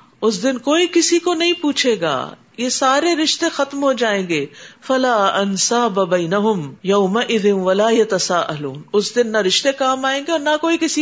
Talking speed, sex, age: 170 wpm, female, 50-69